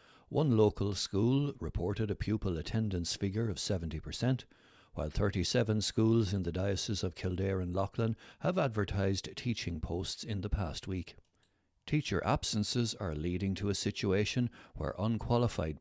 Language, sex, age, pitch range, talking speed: English, male, 60-79, 85-110 Hz, 140 wpm